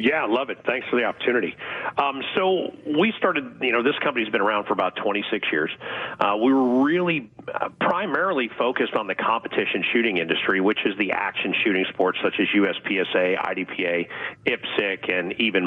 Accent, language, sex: American, English, male